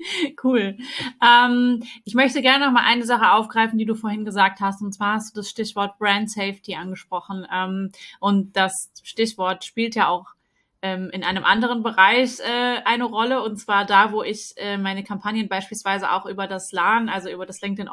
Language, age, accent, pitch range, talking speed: German, 20-39, German, 200-230 Hz, 185 wpm